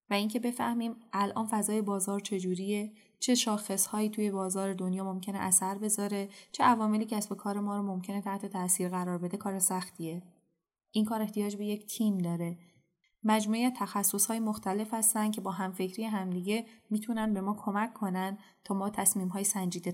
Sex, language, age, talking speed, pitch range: female, Persian, 10-29, 165 wpm, 185-225 Hz